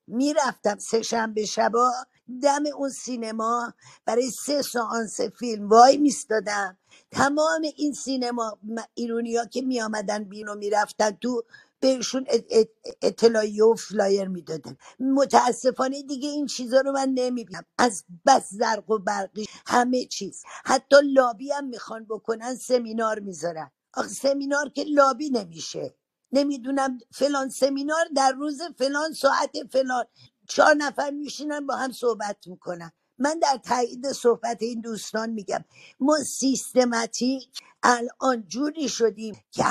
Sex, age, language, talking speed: female, 50-69, Persian, 125 wpm